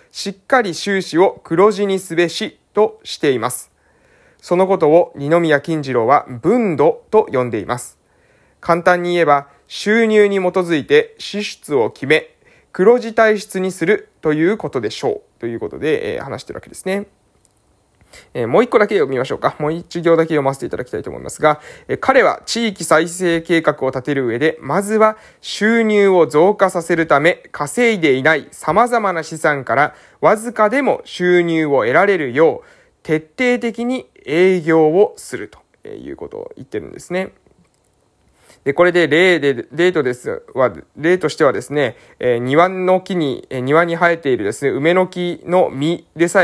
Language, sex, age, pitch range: Japanese, male, 20-39, 160-235 Hz